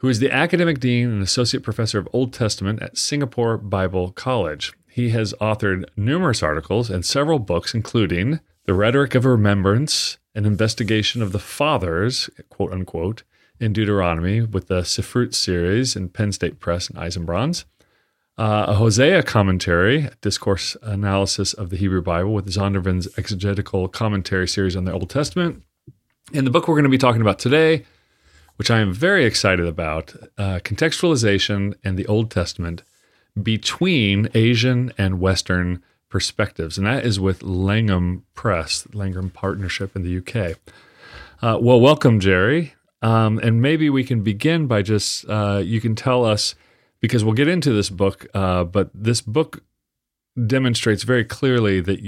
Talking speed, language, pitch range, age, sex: 155 wpm, English, 95-120 Hz, 40-59, male